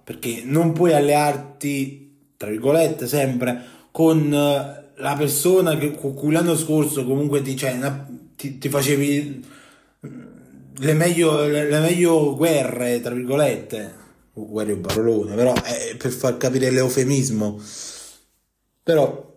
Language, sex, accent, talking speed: Italian, male, native, 125 wpm